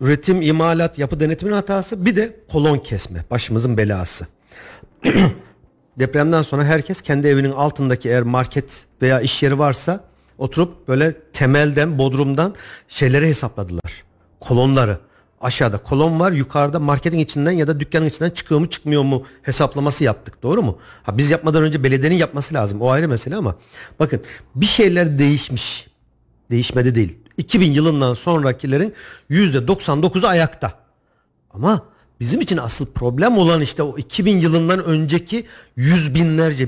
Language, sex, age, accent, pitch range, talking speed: Turkish, male, 50-69, native, 130-185 Hz, 135 wpm